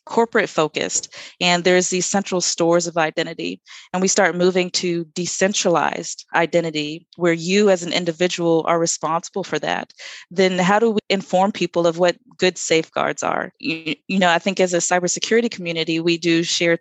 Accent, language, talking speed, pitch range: American, English, 170 wpm, 170-195 Hz